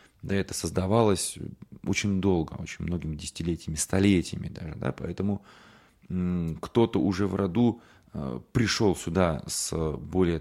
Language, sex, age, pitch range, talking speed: Russian, male, 30-49, 80-100 Hz, 125 wpm